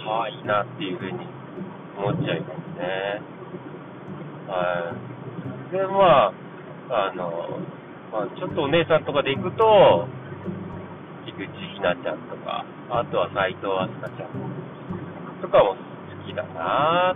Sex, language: male, Japanese